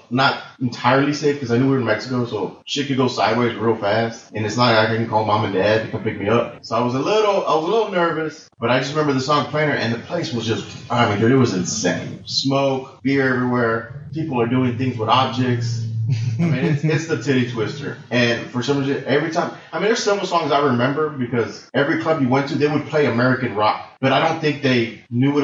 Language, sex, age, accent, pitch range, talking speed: English, male, 30-49, American, 115-140 Hz, 255 wpm